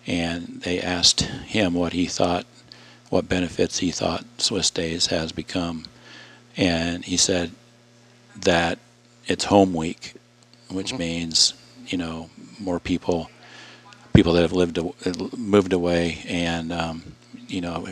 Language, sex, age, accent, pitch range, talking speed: English, male, 50-69, American, 80-90 Hz, 125 wpm